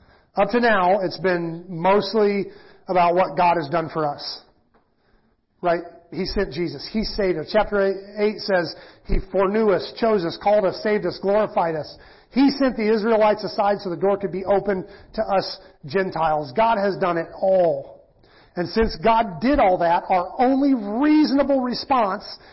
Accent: American